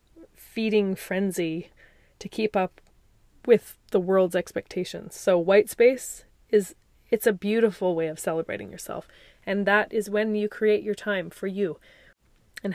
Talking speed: 145 wpm